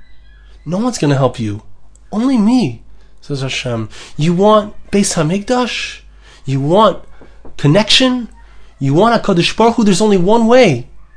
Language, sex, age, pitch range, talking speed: English, male, 30-49, 145-215 Hz, 140 wpm